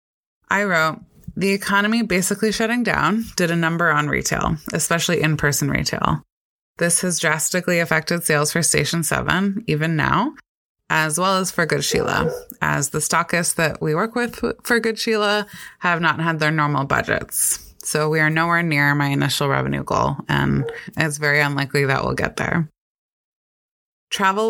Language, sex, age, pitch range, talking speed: English, female, 20-39, 150-190 Hz, 160 wpm